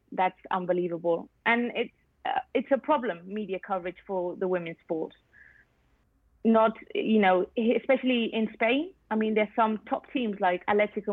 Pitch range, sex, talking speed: 195-225 Hz, female, 150 wpm